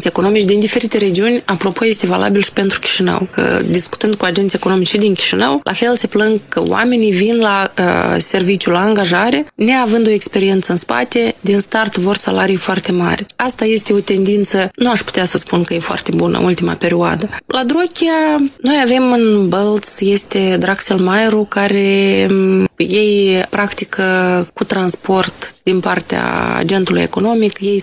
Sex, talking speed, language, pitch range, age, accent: female, 160 wpm, Romanian, 185-220 Hz, 20-39, native